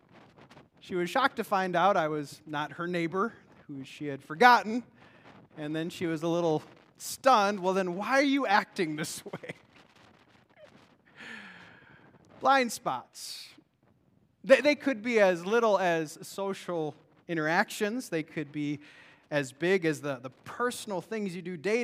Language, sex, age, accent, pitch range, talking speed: English, male, 30-49, American, 160-245 Hz, 150 wpm